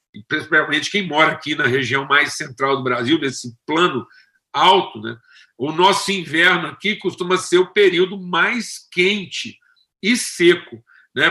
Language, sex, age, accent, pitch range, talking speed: Portuguese, male, 50-69, Brazilian, 140-210 Hz, 145 wpm